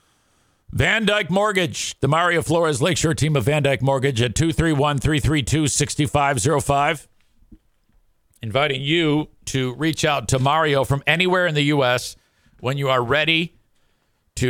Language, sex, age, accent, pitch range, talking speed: English, male, 50-69, American, 120-155 Hz, 130 wpm